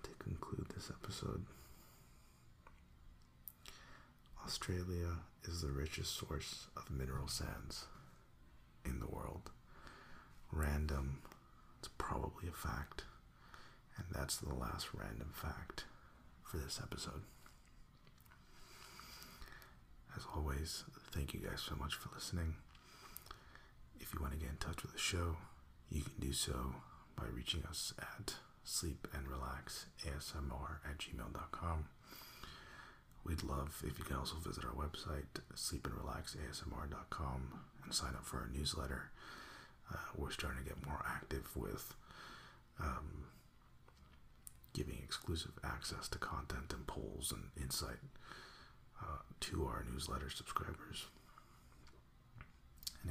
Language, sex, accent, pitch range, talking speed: English, male, American, 65-75 Hz, 115 wpm